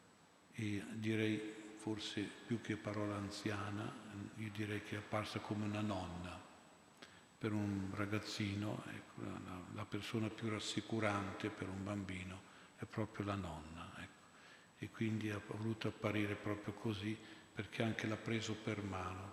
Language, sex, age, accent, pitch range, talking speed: Italian, male, 50-69, native, 100-110 Hz, 130 wpm